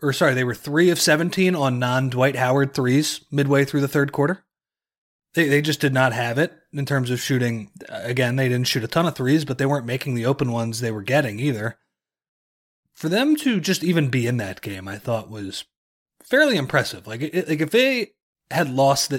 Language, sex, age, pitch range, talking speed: English, male, 30-49, 120-165 Hz, 210 wpm